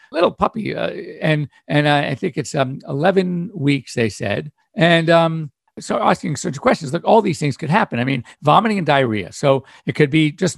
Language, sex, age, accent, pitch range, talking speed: English, male, 50-69, American, 140-195 Hz, 205 wpm